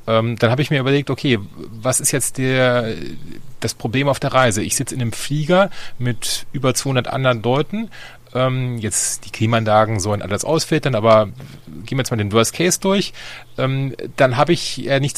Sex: male